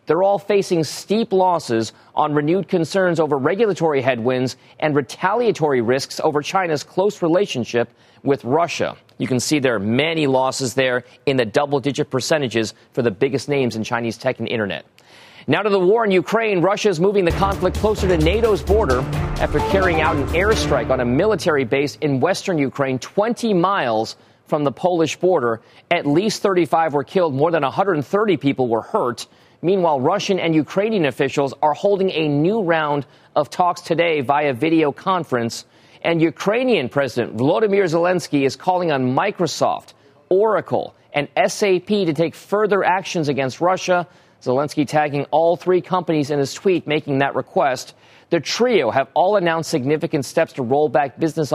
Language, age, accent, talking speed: English, 40-59, American, 165 wpm